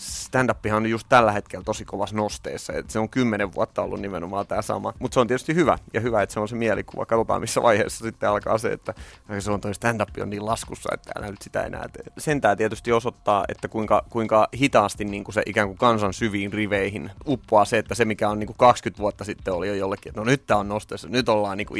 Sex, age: male, 30-49